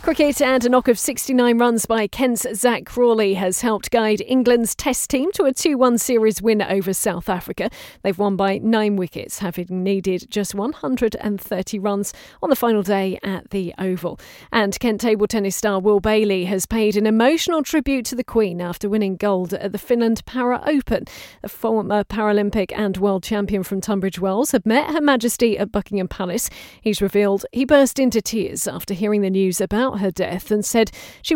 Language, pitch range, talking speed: English, 200-245 Hz, 185 wpm